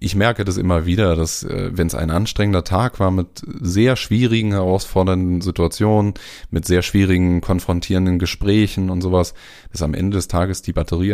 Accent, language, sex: German, German, male